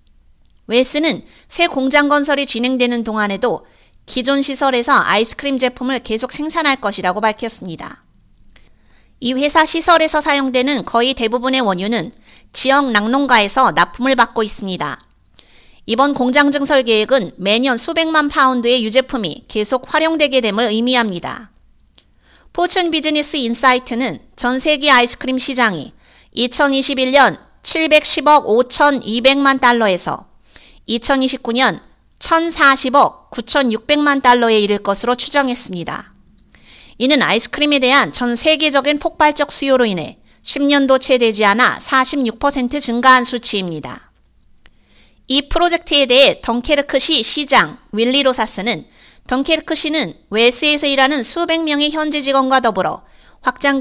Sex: female